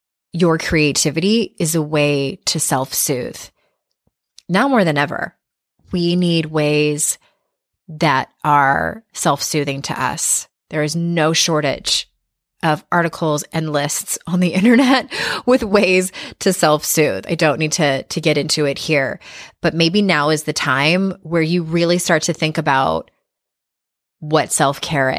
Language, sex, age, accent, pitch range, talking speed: English, female, 20-39, American, 150-180 Hz, 140 wpm